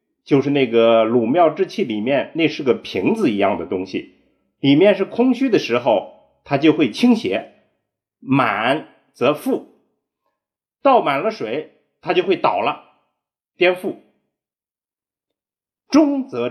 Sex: male